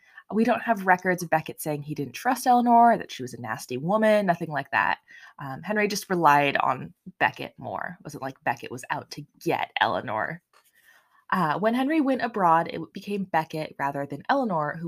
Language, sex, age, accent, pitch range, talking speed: English, female, 20-39, American, 150-225 Hz, 195 wpm